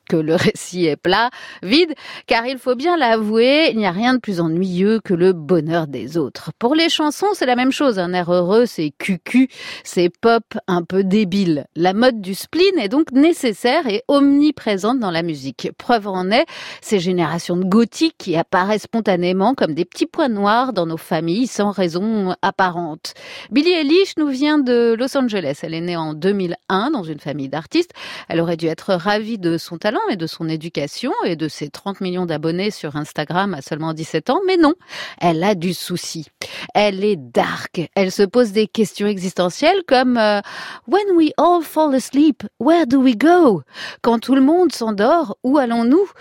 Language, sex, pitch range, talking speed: French, female, 180-265 Hz, 190 wpm